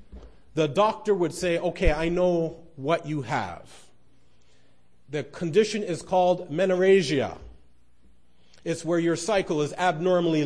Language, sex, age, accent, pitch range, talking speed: English, male, 40-59, American, 140-200 Hz, 120 wpm